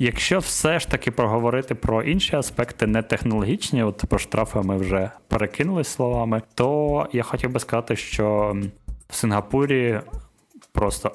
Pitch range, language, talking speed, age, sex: 95-120 Hz, Ukrainian, 135 wpm, 20-39, male